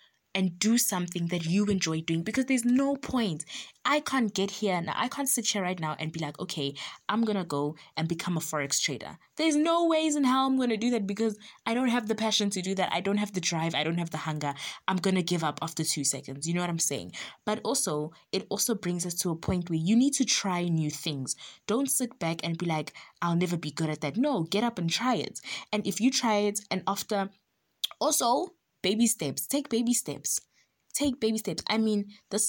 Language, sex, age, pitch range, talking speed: English, female, 20-39, 165-230 Hz, 240 wpm